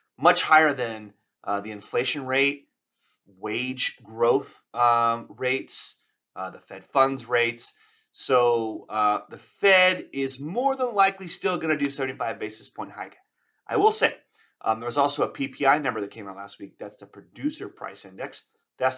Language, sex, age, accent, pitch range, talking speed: English, male, 30-49, American, 105-170 Hz, 170 wpm